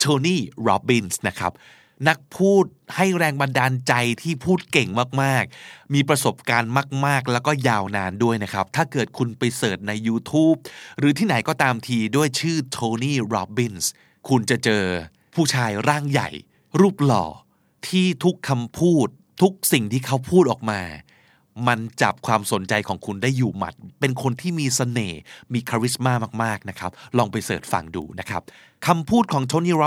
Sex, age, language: male, 20-39, Thai